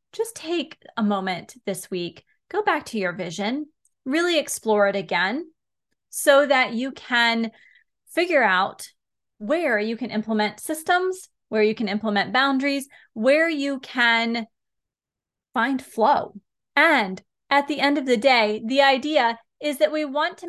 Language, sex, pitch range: English, female, 215-280 Hz